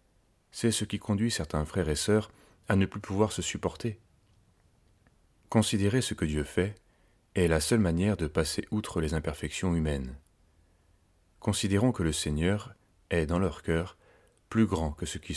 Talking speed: 165 wpm